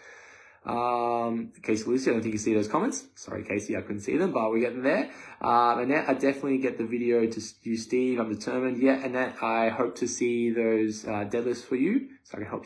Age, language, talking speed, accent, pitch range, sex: 20-39, English, 225 wpm, Australian, 110-130 Hz, male